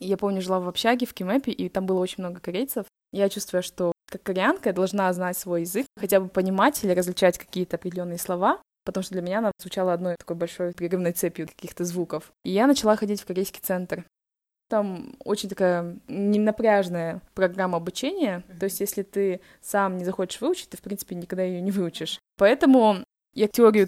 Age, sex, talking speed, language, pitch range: 20-39, female, 190 wpm, Russian, 185-220 Hz